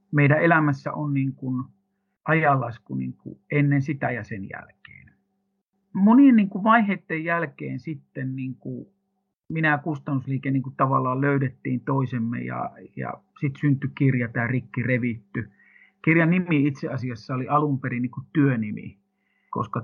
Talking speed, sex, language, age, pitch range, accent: 140 wpm, male, Finnish, 50-69, 130-175 Hz, native